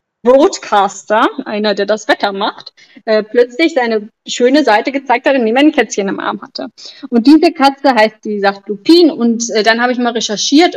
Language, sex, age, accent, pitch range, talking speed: German, female, 20-39, German, 210-260 Hz, 195 wpm